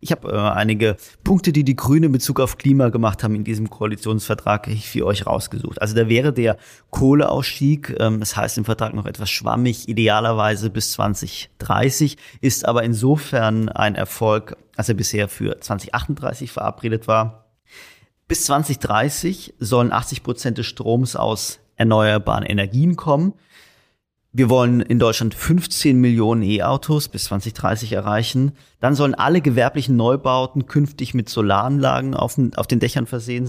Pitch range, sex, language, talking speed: 110-135 Hz, male, German, 140 wpm